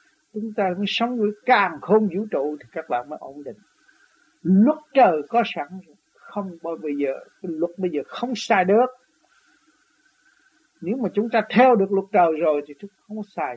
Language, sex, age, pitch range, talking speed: Vietnamese, male, 60-79, 170-245 Hz, 190 wpm